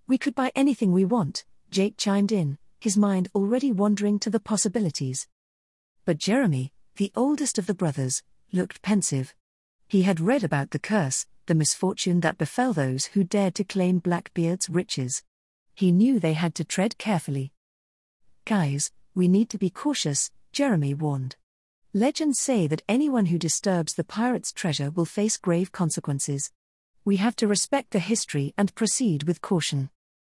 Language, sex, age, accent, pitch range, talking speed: English, female, 40-59, British, 155-215 Hz, 160 wpm